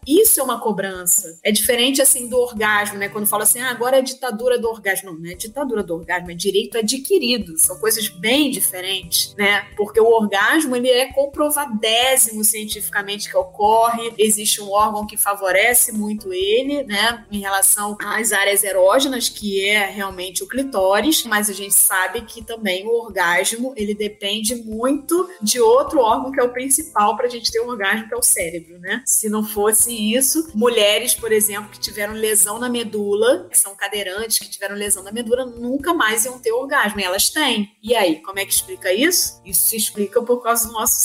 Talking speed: 190 wpm